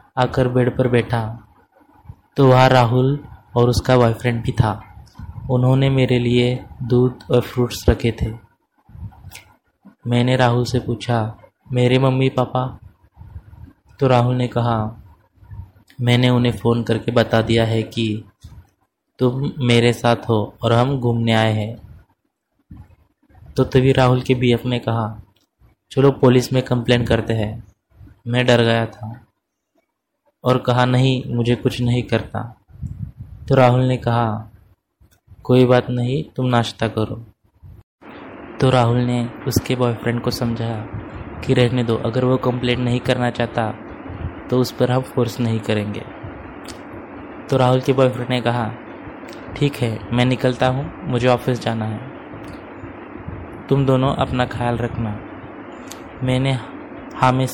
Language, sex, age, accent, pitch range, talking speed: Hindi, male, 20-39, native, 110-125 Hz, 130 wpm